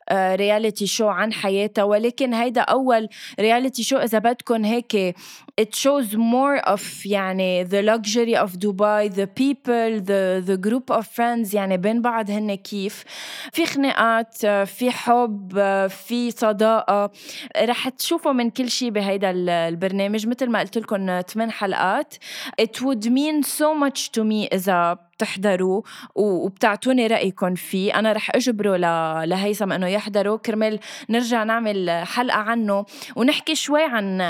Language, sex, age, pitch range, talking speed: Arabic, female, 20-39, 200-250 Hz, 135 wpm